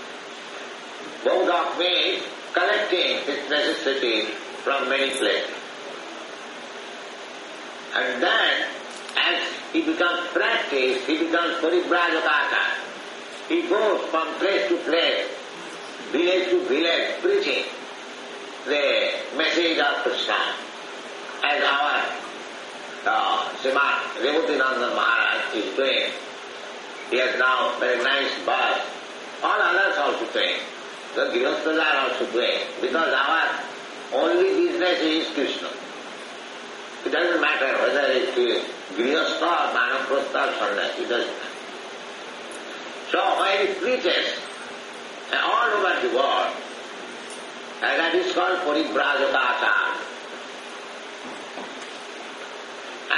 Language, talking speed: Hungarian, 95 wpm